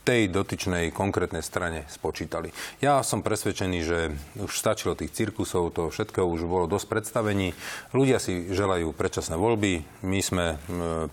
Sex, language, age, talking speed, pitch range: male, Slovak, 40-59, 150 wpm, 90-110 Hz